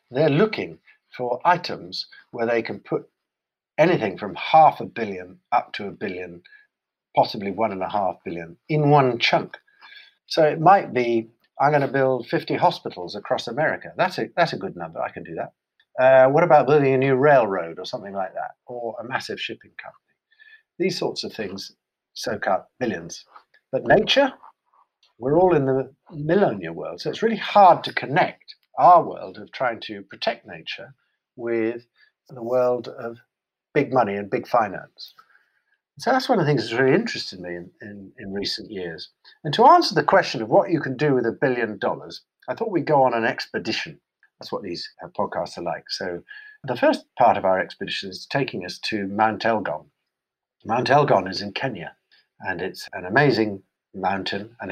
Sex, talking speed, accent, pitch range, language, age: male, 185 wpm, British, 110-175 Hz, English, 50-69